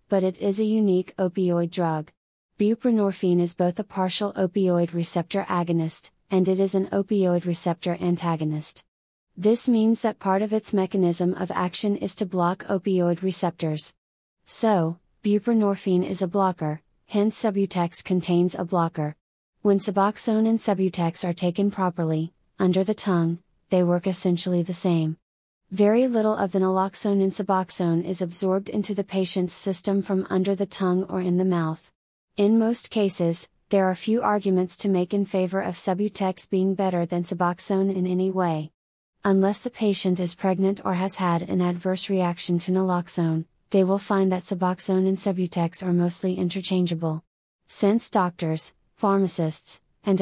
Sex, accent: female, American